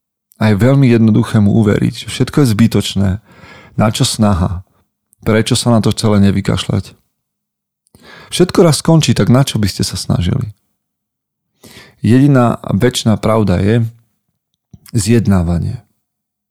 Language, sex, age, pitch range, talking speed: Slovak, male, 40-59, 100-120 Hz, 120 wpm